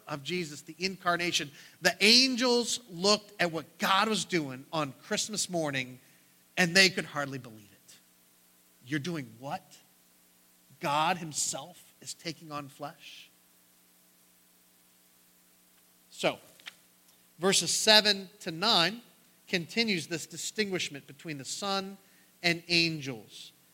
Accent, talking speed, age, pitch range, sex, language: American, 110 wpm, 40-59, 130-190 Hz, male, English